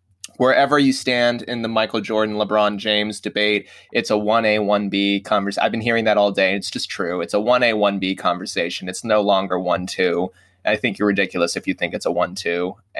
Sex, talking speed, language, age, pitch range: male, 190 wpm, English, 20-39, 105-145 Hz